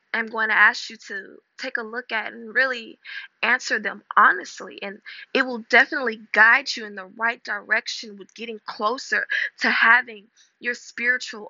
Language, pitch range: English, 205-255 Hz